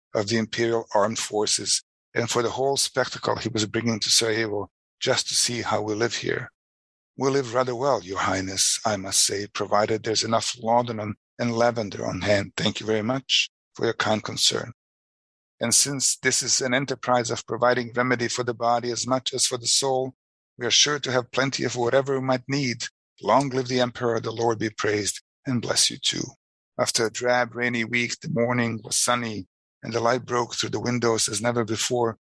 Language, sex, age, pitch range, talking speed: English, male, 50-69, 110-125 Hz, 200 wpm